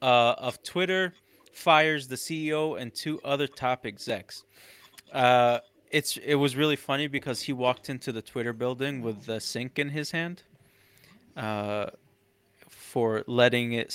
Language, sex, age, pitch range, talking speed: English, male, 20-39, 110-145 Hz, 145 wpm